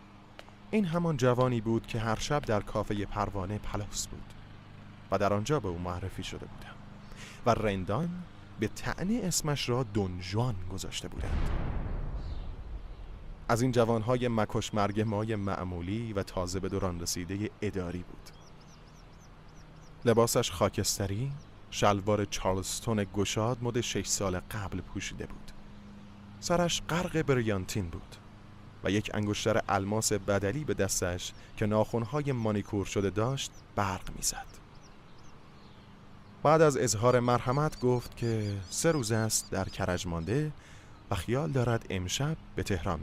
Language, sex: Persian, male